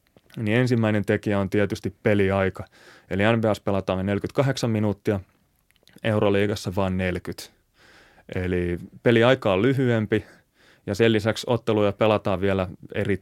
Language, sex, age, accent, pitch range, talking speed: Finnish, male, 30-49, native, 95-115 Hz, 115 wpm